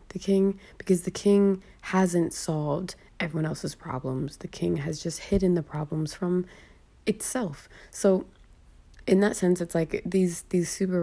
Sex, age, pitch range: female, 20-39, 150-175 Hz